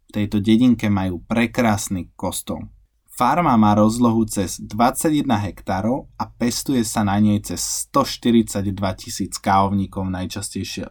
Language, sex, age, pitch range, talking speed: Slovak, male, 20-39, 100-115 Hz, 115 wpm